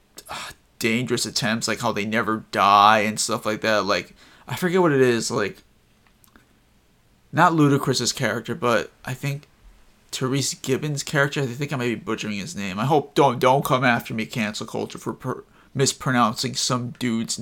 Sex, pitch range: male, 110-130 Hz